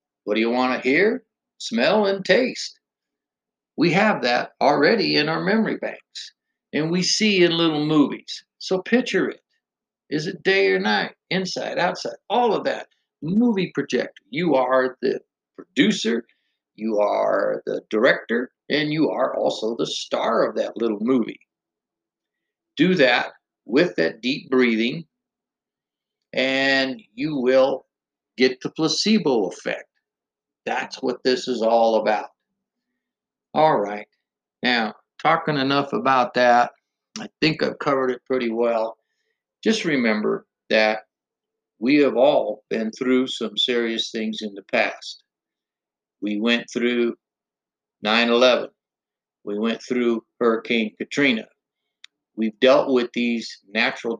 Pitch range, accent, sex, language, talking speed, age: 115-175 Hz, American, male, English, 130 wpm, 60-79